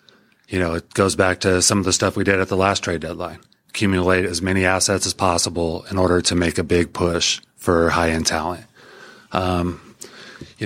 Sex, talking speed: male, 195 wpm